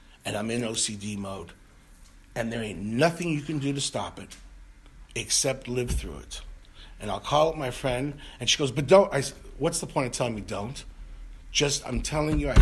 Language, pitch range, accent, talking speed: English, 100-145 Hz, American, 210 wpm